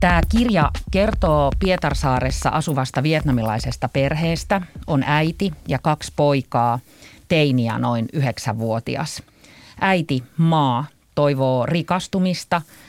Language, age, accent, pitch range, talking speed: Finnish, 40-59, native, 130-165 Hz, 90 wpm